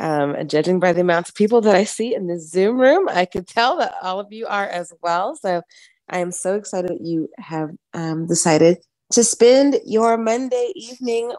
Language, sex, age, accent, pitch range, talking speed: English, female, 20-39, American, 160-220 Hz, 210 wpm